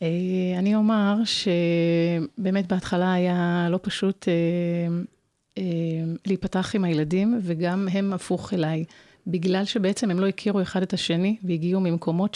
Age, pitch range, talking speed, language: 30-49, 175-205 Hz, 115 wpm, Hebrew